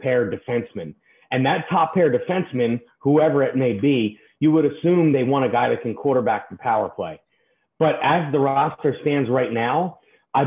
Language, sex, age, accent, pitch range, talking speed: English, male, 30-49, American, 120-150 Hz, 185 wpm